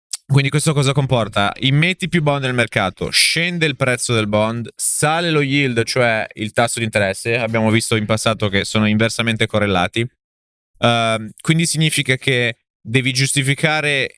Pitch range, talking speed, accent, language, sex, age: 105-130 Hz, 150 wpm, native, Italian, male, 20-39